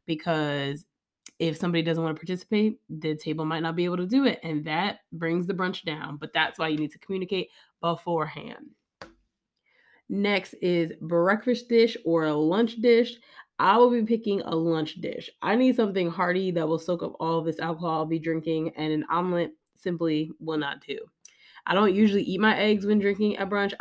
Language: English